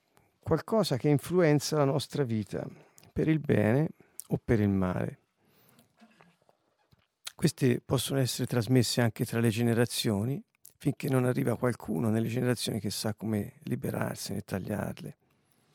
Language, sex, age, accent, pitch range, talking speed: Italian, male, 50-69, native, 120-150 Hz, 120 wpm